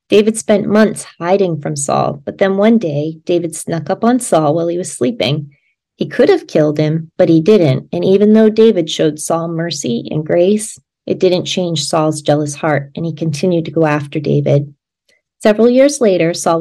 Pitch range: 155-205 Hz